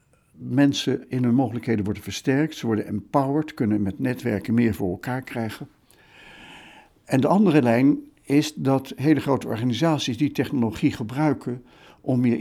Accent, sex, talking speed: Dutch, male, 145 wpm